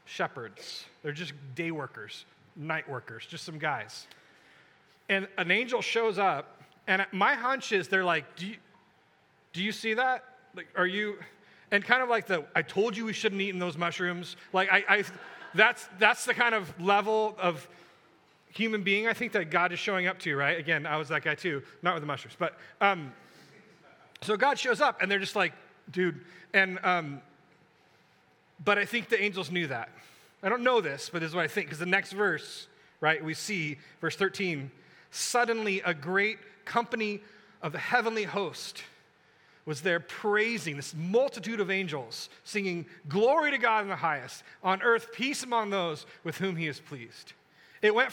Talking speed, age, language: 185 wpm, 30-49, English